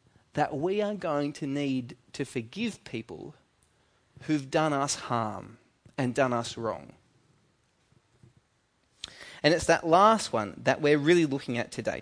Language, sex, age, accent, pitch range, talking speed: English, male, 30-49, Australian, 130-195 Hz, 140 wpm